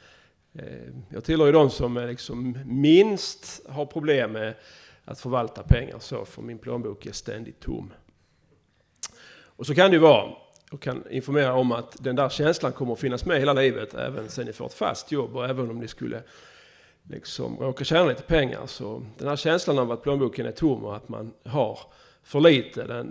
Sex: male